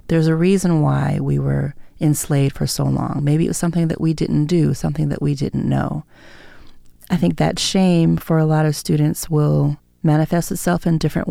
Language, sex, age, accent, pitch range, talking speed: English, female, 30-49, American, 135-170 Hz, 195 wpm